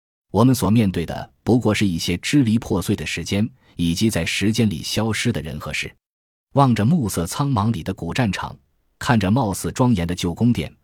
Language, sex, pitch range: Chinese, male, 85-115 Hz